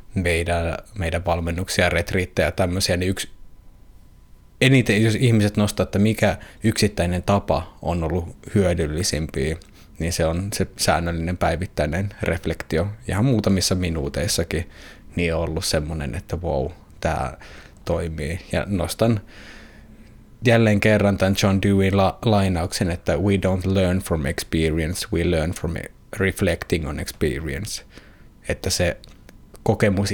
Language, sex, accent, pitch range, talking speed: Finnish, male, native, 85-105 Hz, 115 wpm